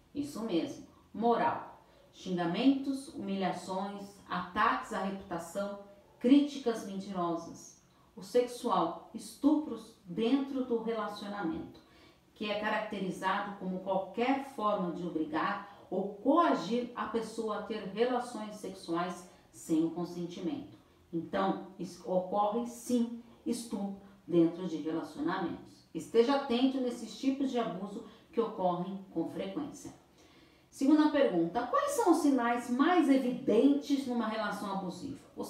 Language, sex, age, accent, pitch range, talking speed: Portuguese, female, 40-59, Brazilian, 180-245 Hz, 110 wpm